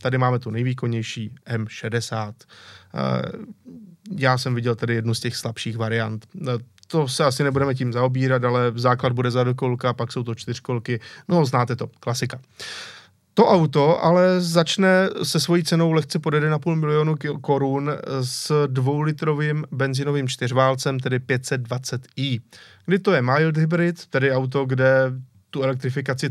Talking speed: 140 wpm